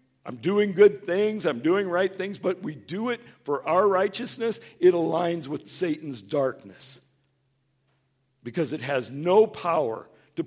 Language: English